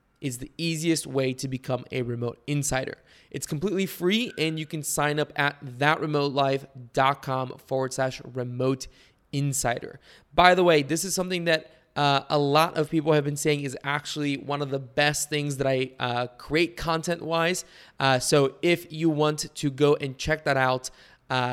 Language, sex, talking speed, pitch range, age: English, male, 175 wpm, 135-155 Hz, 20-39